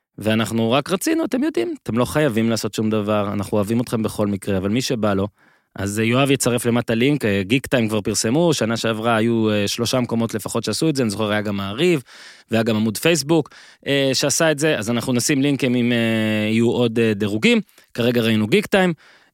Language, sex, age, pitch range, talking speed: Hebrew, male, 20-39, 105-140 Hz, 160 wpm